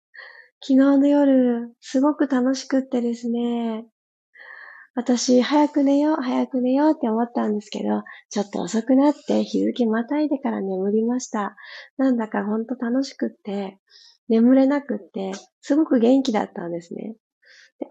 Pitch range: 235-325 Hz